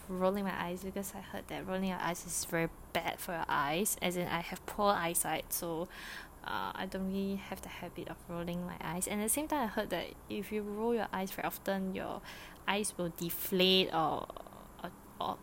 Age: 10-29